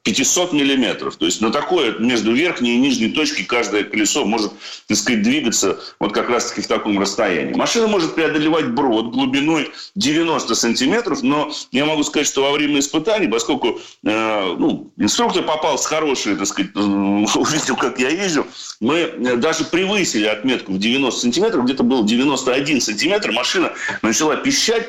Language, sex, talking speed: Russian, male, 155 wpm